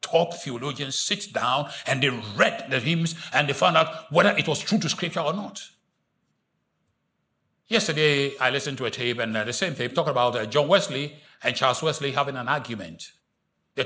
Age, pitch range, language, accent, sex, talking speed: 60-79, 140-230 Hz, English, Nigerian, male, 190 wpm